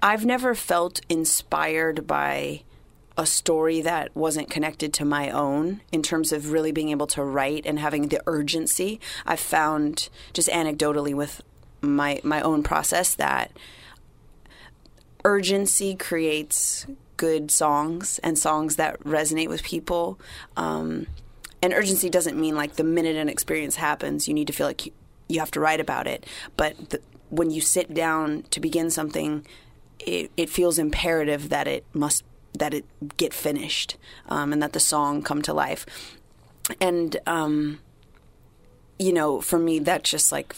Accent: American